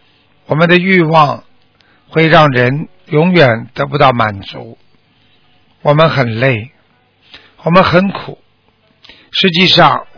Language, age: Chinese, 60-79